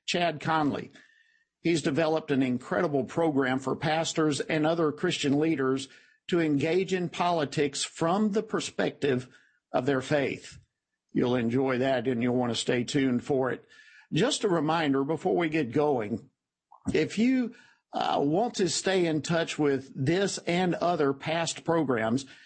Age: 50-69